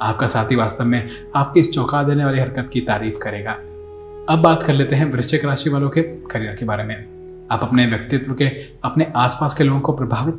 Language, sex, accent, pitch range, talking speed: Hindi, male, native, 110-145 Hz, 210 wpm